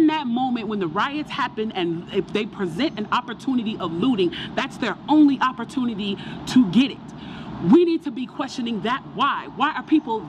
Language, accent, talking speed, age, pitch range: English, American, 180 wpm, 30-49, 215-290 Hz